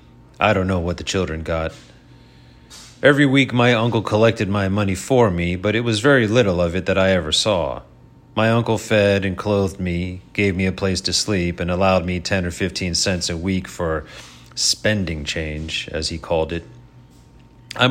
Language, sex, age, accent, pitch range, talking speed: English, male, 40-59, American, 90-115 Hz, 190 wpm